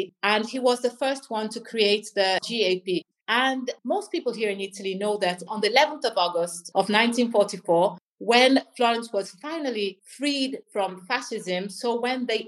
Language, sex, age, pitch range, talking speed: English, female, 30-49, 205-260 Hz, 170 wpm